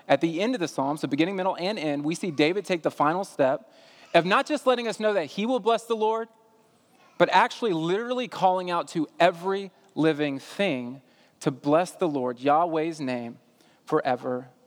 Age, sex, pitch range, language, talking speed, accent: 30-49, male, 155-210 Hz, English, 190 wpm, American